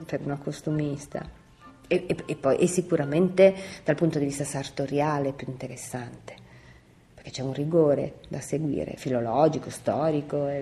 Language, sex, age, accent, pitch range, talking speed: Italian, female, 40-59, native, 135-175 Hz, 145 wpm